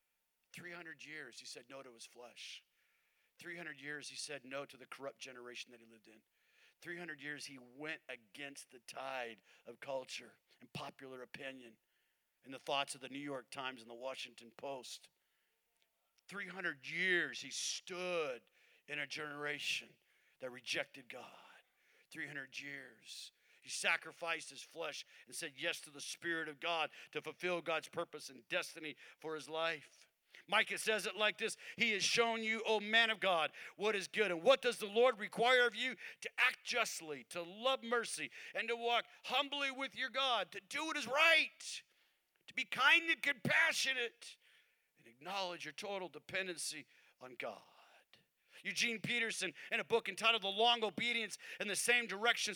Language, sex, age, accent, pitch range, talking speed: English, male, 50-69, American, 150-235 Hz, 165 wpm